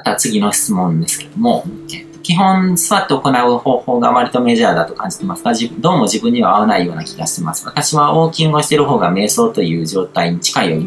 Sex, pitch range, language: male, 110-175 Hz, Japanese